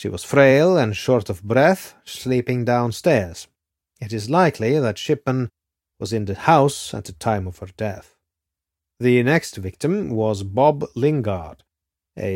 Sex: male